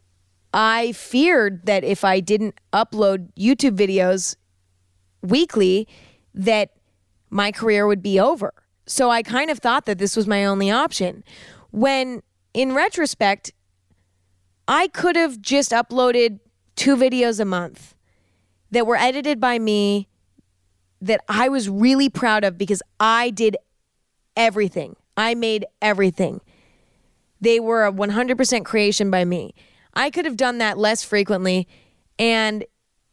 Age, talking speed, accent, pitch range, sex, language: 20-39, 130 wpm, American, 195-240 Hz, female, English